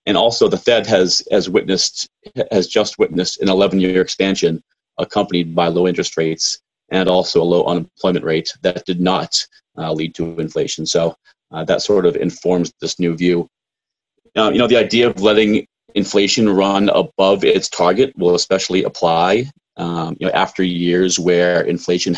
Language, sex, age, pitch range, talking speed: English, male, 30-49, 85-95 Hz, 170 wpm